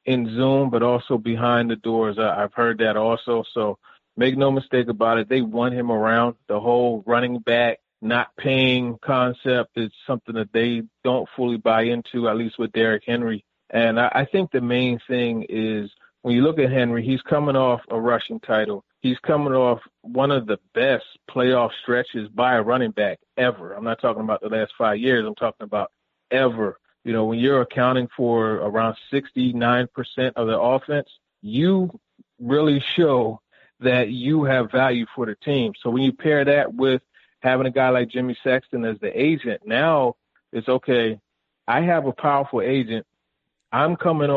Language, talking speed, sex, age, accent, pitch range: English, 180 wpm, male, 30-49, American, 115-130 Hz